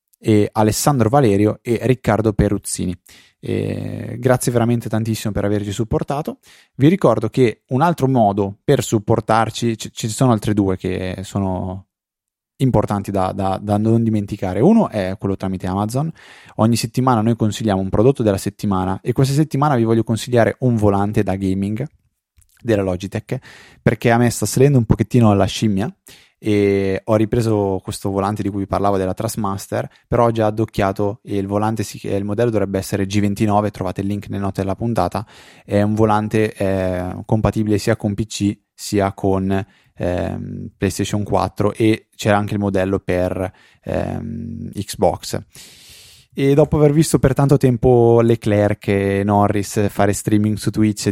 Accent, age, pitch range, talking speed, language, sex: native, 20-39, 100-115 Hz, 155 wpm, Italian, male